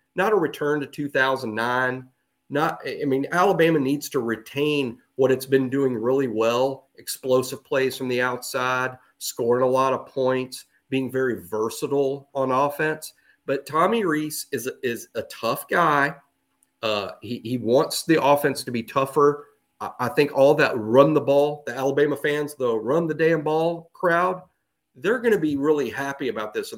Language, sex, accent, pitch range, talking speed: English, male, American, 130-165 Hz, 175 wpm